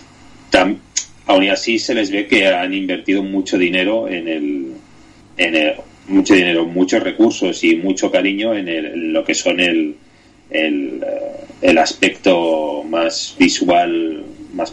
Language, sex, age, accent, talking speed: Spanish, male, 30-49, Spanish, 140 wpm